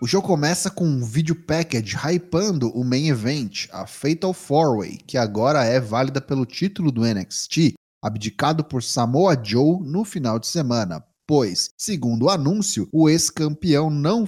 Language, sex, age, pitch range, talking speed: Portuguese, male, 20-39, 125-175 Hz, 155 wpm